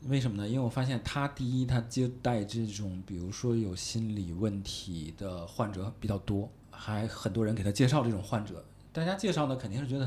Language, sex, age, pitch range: Chinese, male, 20-39, 115-150 Hz